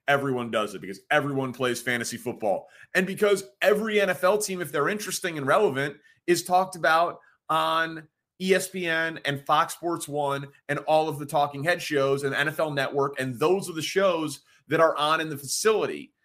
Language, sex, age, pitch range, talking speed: English, male, 30-49, 130-175 Hz, 180 wpm